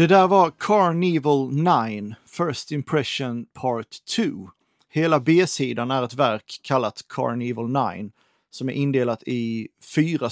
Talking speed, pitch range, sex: 130 wpm, 125-160 Hz, male